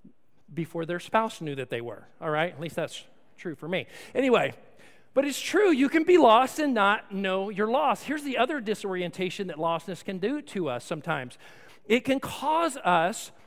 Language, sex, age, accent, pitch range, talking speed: English, male, 40-59, American, 195-270 Hz, 190 wpm